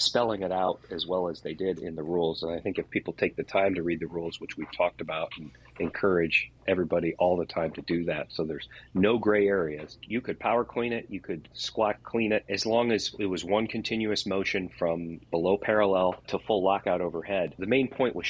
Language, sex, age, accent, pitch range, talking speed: English, male, 30-49, American, 90-115 Hz, 230 wpm